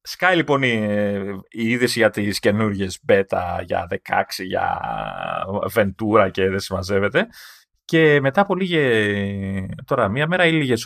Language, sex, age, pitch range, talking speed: Greek, male, 30-49, 105-160 Hz, 140 wpm